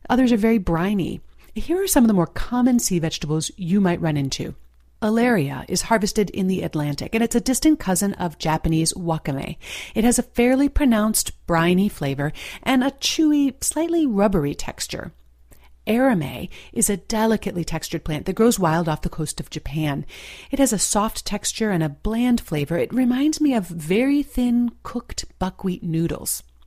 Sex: female